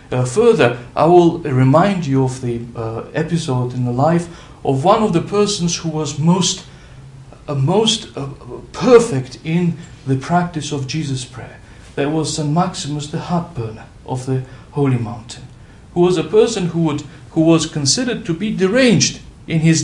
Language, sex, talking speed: English, male, 170 wpm